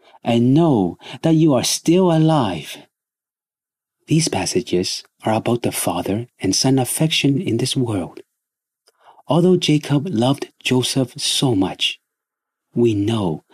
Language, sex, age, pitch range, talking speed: English, male, 40-59, 115-160 Hz, 120 wpm